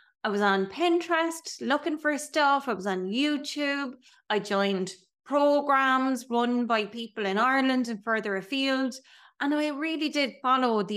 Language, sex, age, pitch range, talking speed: English, female, 30-49, 205-280 Hz, 155 wpm